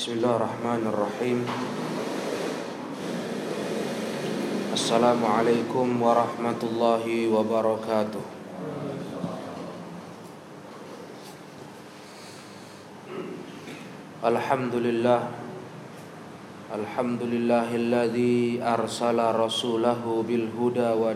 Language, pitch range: Indonesian, 120-130 Hz